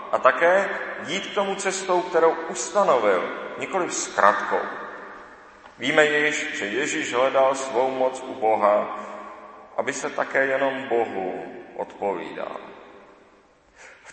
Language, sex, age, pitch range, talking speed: Czech, male, 40-59, 140-190 Hz, 105 wpm